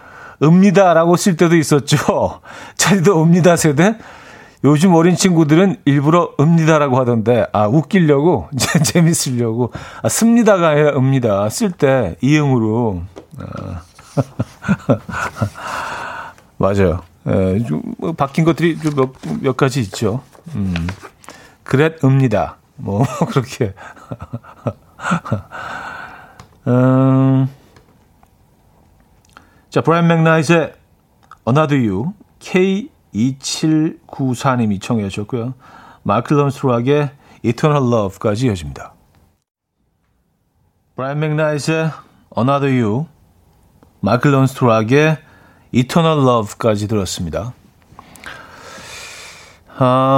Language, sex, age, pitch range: Korean, male, 40-59, 120-165 Hz